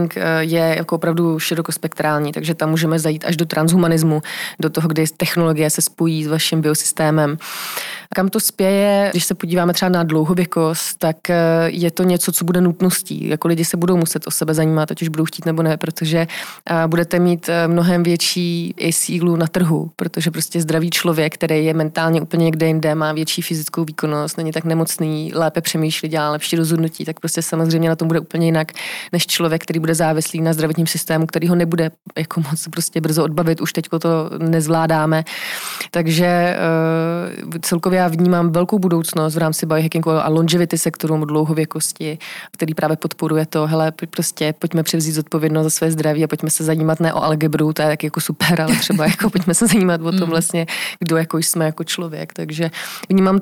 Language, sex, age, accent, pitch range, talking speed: Czech, female, 20-39, native, 160-175 Hz, 180 wpm